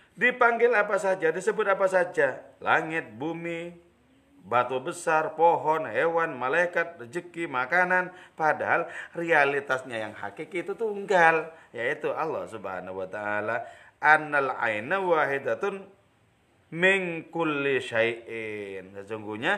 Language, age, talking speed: English, 30-49, 90 wpm